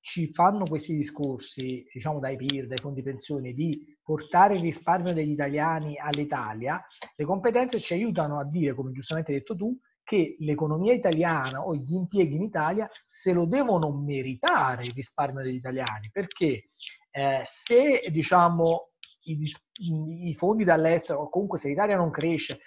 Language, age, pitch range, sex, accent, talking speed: Italian, 30-49, 145-180 Hz, male, native, 155 wpm